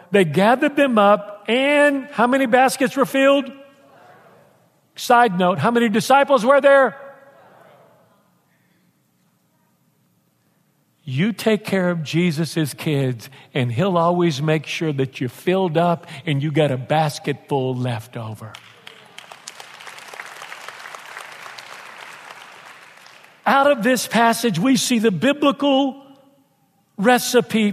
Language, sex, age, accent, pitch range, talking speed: English, male, 50-69, American, 170-240 Hz, 105 wpm